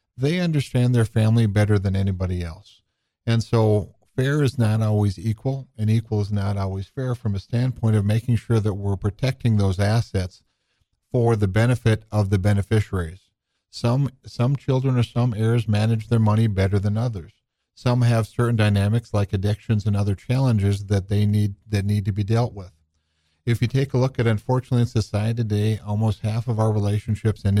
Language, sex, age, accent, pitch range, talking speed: English, male, 50-69, American, 100-115 Hz, 185 wpm